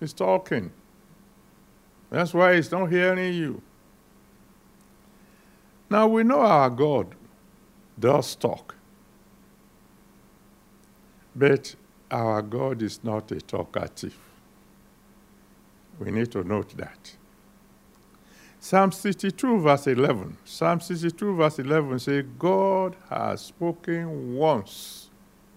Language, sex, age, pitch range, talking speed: English, male, 60-79, 140-195 Hz, 95 wpm